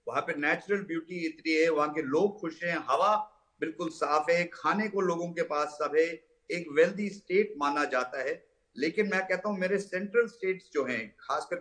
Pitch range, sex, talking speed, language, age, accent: 165-210 Hz, male, 195 wpm, Hindi, 50-69, native